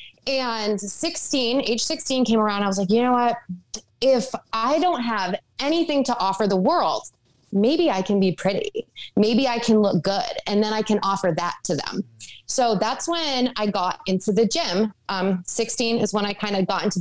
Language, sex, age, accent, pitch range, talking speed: English, female, 20-39, American, 190-255 Hz, 200 wpm